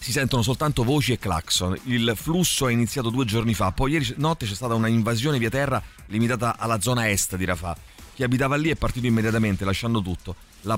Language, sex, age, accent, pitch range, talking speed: Italian, male, 30-49, native, 100-125 Hz, 200 wpm